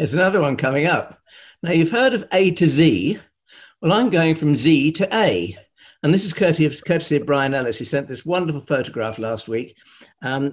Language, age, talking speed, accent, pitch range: English, 60-79, 200 wpm, British, 140-180 Hz